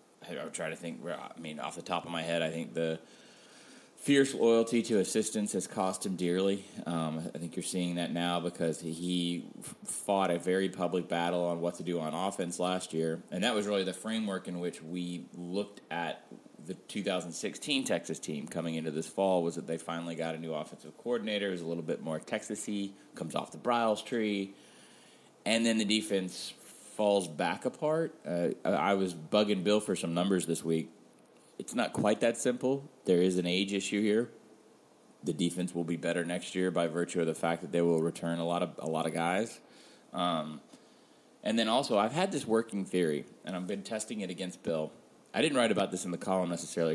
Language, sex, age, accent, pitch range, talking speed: English, male, 30-49, American, 85-100 Hz, 210 wpm